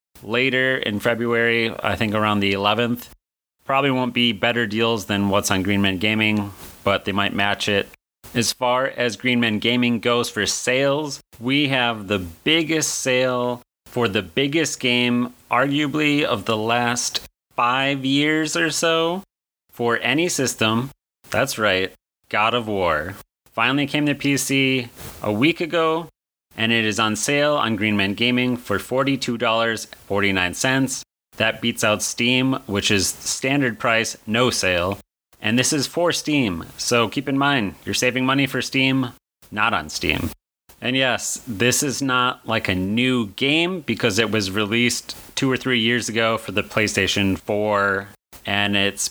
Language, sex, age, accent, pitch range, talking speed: English, male, 30-49, American, 110-135 Hz, 155 wpm